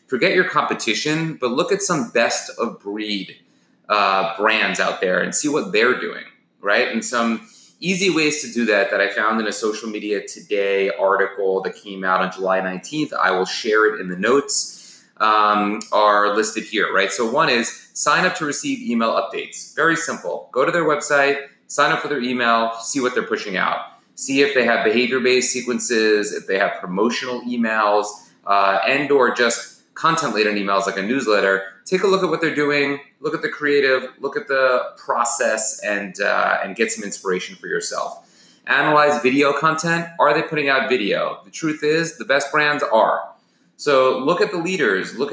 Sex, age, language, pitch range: male, 30-49, English, 105-145 Hz